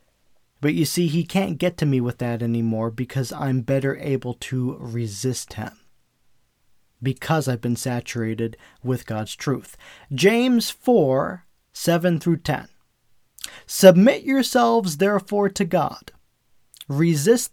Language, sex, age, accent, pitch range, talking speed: English, male, 40-59, American, 135-195 Hz, 115 wpm